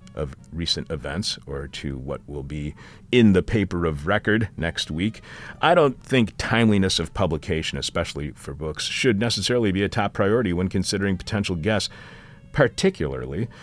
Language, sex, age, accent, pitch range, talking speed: English, male, 50-69, American, 85-115 Hz, 155 wpm